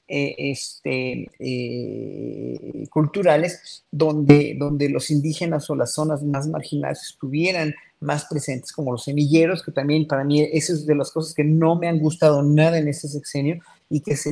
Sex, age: male, 40-59